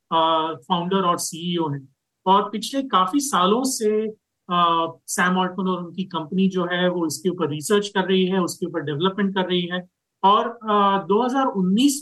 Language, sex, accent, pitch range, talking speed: Hindi, male, native, 170-215 Hz, 165 wpm